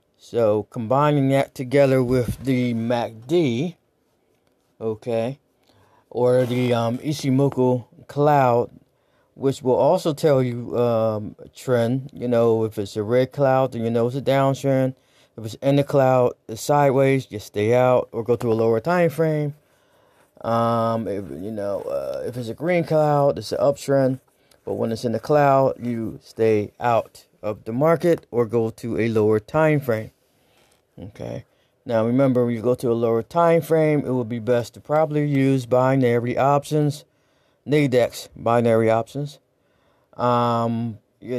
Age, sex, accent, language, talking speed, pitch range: 30-49, male, American, English, 155 wpm, 115-135 Hz